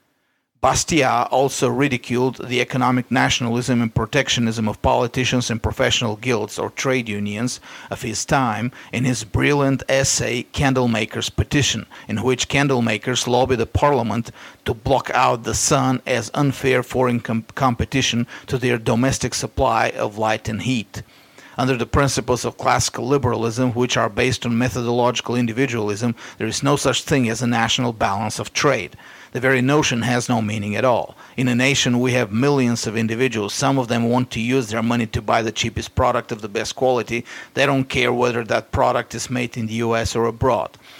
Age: 40-59